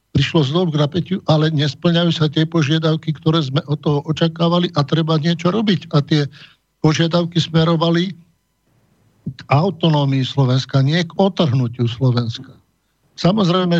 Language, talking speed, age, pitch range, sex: Slovak, 130 wpm, 60-79, 140-165 Hz, male